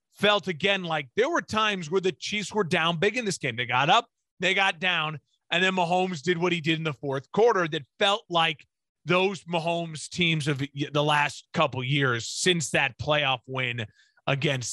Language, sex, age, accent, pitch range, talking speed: English, male, 30-49, American, 155-200 Hz, 200 wpm